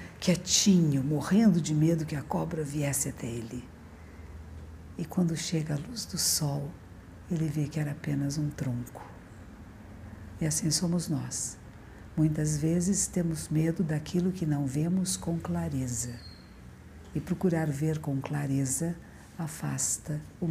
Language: Portuguese